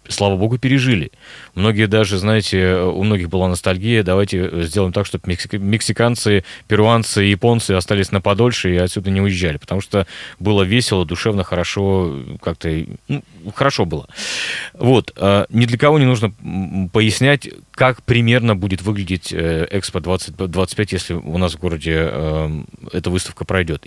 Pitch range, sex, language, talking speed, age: 90-110 Hz, male, Russian, 135 wpm, 30-49